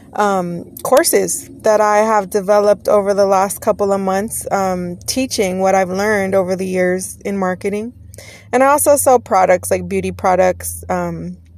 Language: English